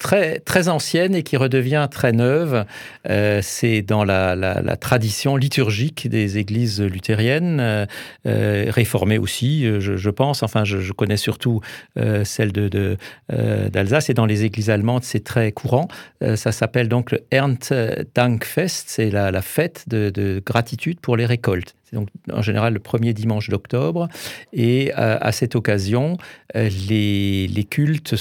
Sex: male